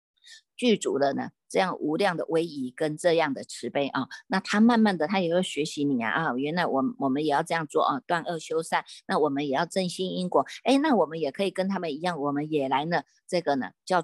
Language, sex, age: Chinese, female, 50-69